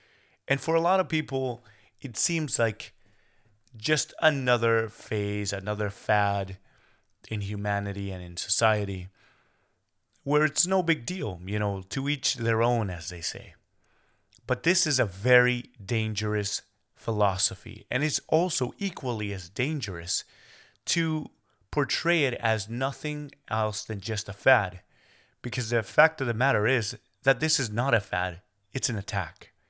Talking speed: 145 wpm